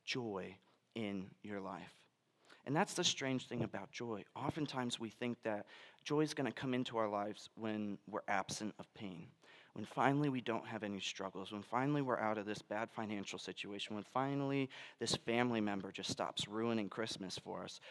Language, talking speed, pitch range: English, 185 wpm, 105-135 Hz